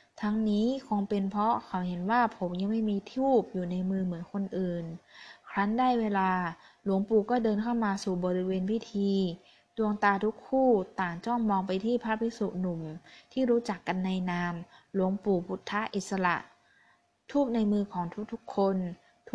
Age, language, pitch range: 20-39, Thai, 185-225 Hz